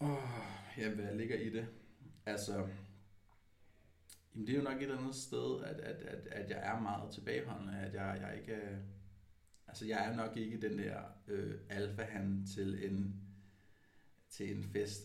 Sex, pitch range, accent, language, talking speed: male, 95-110 Hz, native, Danish, 170 wpm